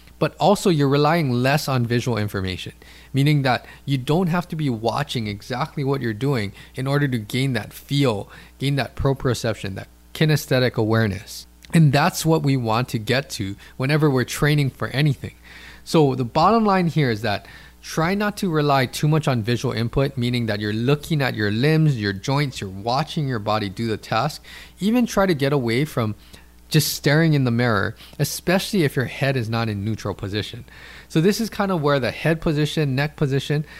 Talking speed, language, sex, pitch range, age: 190 wpm, English, male, 115-155 Hz, 20-39